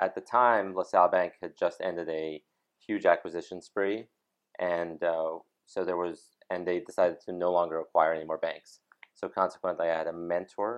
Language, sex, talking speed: English, male, 185 wpm